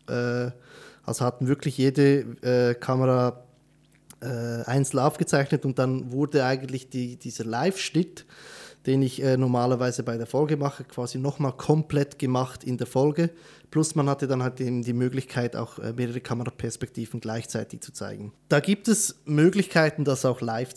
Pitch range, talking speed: 120-145 Hz, 145 wpm